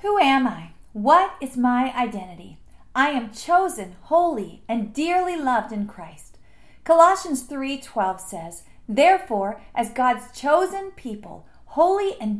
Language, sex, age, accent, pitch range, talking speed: English, female, 40-59, American, 225-325 Hz, 125 wpm